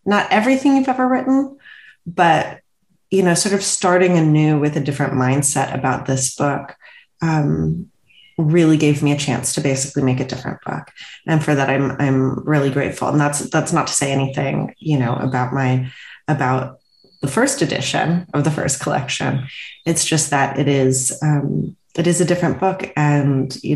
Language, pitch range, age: English, 130-170 Hz, 30-49